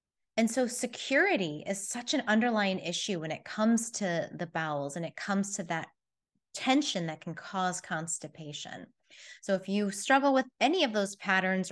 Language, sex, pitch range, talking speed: English, female, 175-230 Hz, 170 wpm